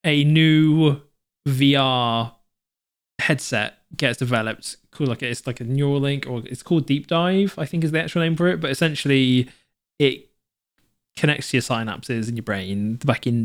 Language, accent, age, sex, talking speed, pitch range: English, British, 20-39, male, 165 wpm, 125-155 Hz